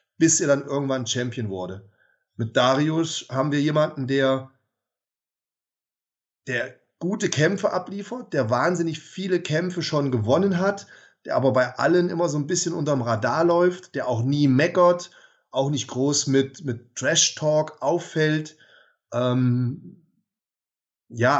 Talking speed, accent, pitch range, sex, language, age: 130 wpm, German, 130-165 Hz, male, German, 30-49